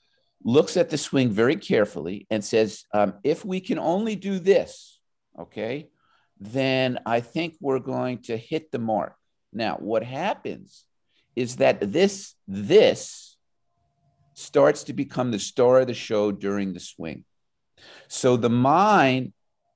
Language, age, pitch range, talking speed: English, 50-69, 120-175 Hz, 140 wpm